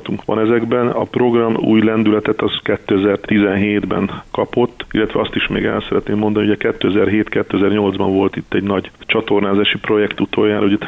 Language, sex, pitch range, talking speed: Hungarian, male, 100-105 Hz, 155 wpm